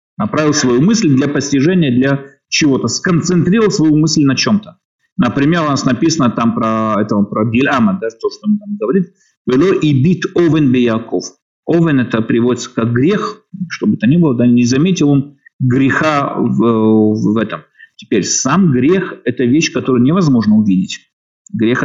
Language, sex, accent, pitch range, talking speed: Russian, male, native, 125-195 Hz, 155 wpm